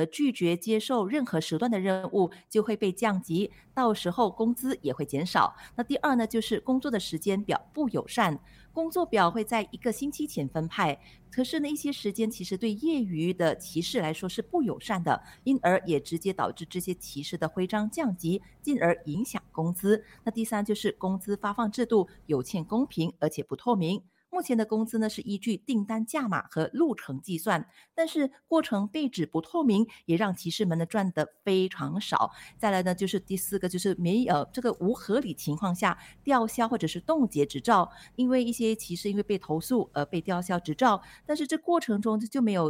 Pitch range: 165-230 Hz